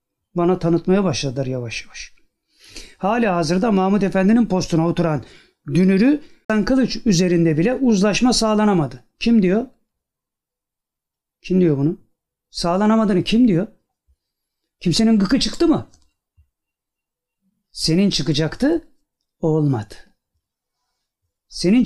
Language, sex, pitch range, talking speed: Turkish, male, 160-225 Hz, 90 wpm